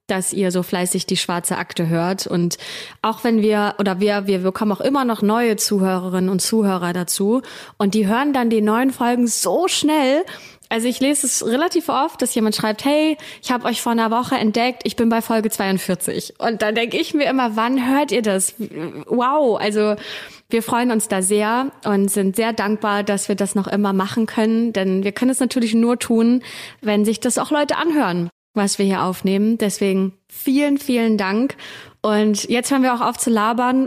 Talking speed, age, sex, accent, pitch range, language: 200 wpm, 20-39, female, German, 195-240 Hz, German